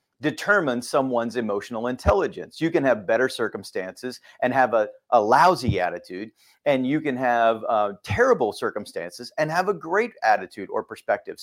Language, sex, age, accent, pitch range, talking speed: English, male, 40-59, American, 115-160 Hz, 150 wpm